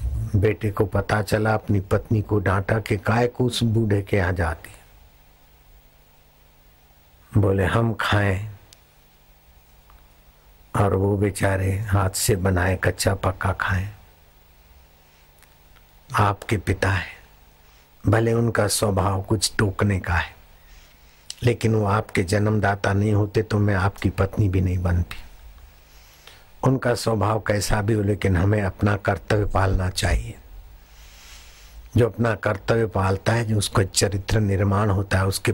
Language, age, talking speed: Hindi, 60-79, 120 wpm